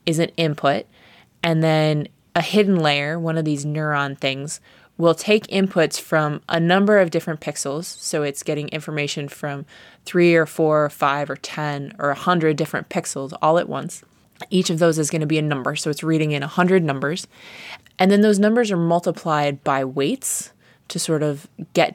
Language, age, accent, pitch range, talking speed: English, 20-39, American, 150-180 Hz, 185 wpm